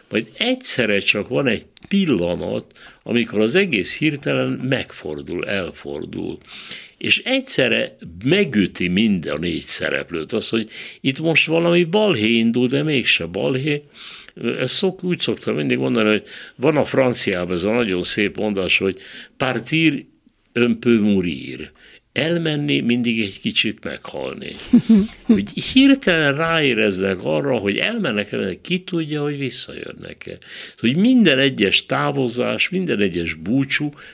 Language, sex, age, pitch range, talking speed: Hungarian, male, 60-79, 100-165 Hz, 125 wpm